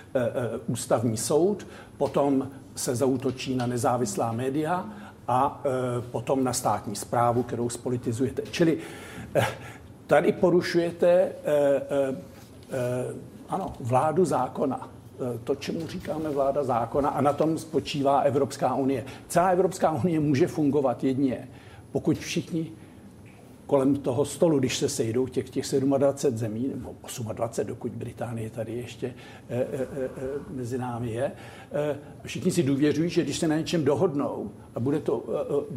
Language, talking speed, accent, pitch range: Czech, 130 wpm, native, 125-145 Hz